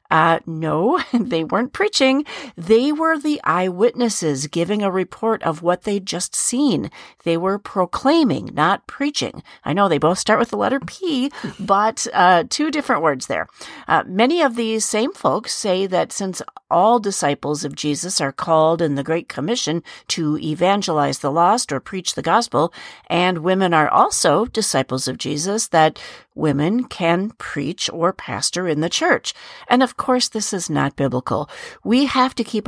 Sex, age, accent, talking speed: female, 50-69, American, 170 wpm